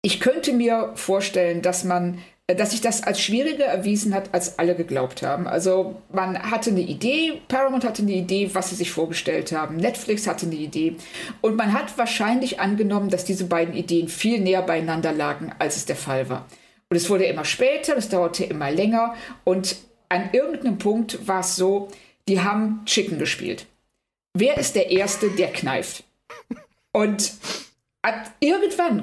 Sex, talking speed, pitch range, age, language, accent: female, 165 wpm, 180-230 Hz, 50-69, German, German